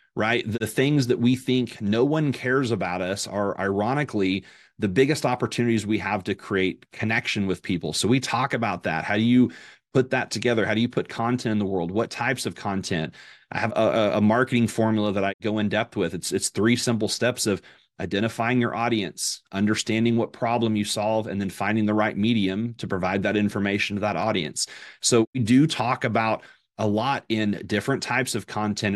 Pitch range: 105-125 Hz